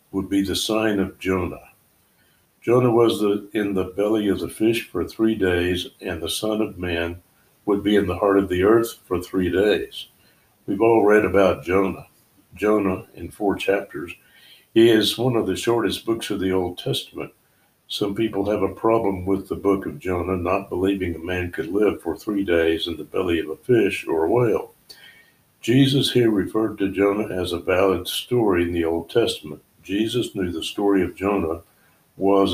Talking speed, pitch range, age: 190 wpm, 90-110 Hz, 60-79